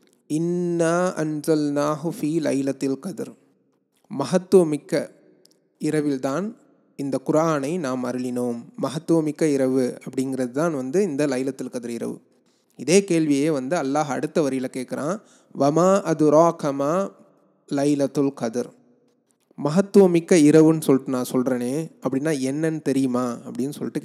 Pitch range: 130-165 Hz